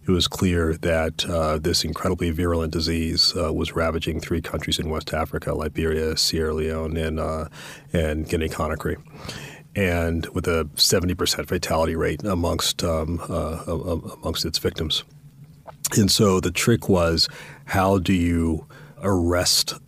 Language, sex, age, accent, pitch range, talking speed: English, male, 40-59, American, 80-95 Hz, 140 wpm